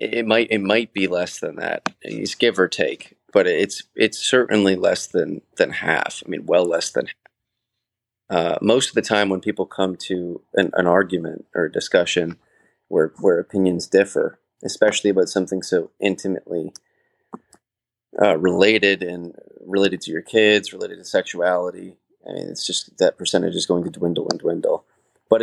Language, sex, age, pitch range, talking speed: English, male, 30-49, 90-115 Hz, 175 wpm